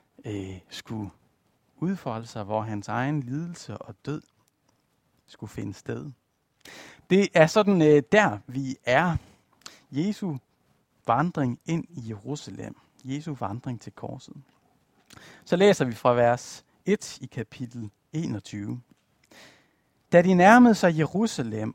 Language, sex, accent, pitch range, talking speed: Danish, male, native, 120-180 Hz, 115 wpm